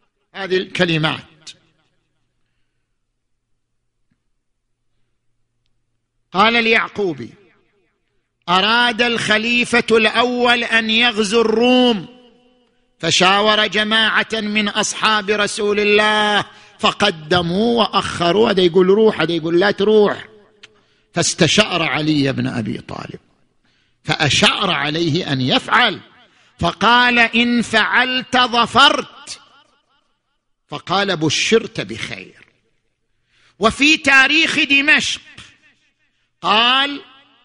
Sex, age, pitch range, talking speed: male, 50-69, 180-235 Hz, 70 wpm